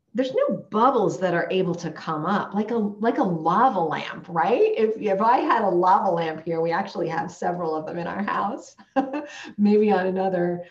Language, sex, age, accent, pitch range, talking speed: English, female, 40-59, American, 180-255 Hz, 200 wpm